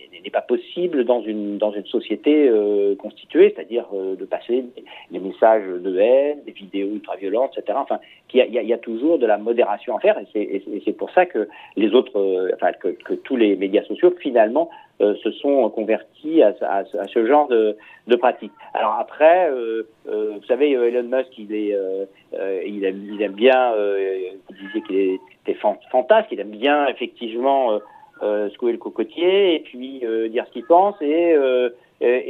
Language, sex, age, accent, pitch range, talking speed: French, male, 50-69, French, 110-180 Hz, 195 wpm